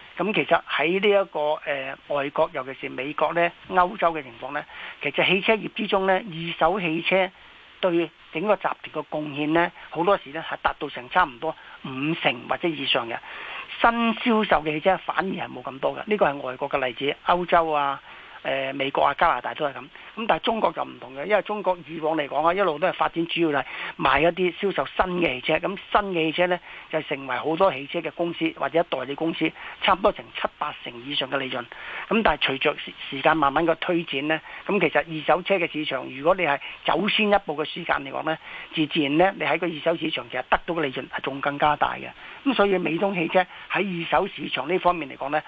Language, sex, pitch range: Chinese, male, 145-180 Hz